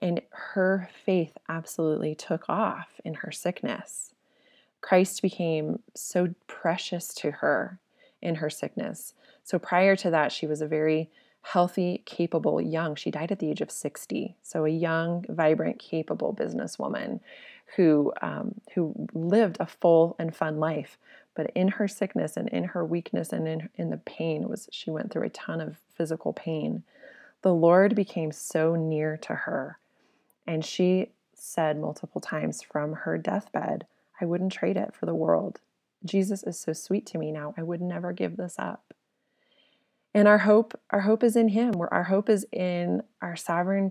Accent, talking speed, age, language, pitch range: American, 170 wpm, 20-39, English, 160-195 Hz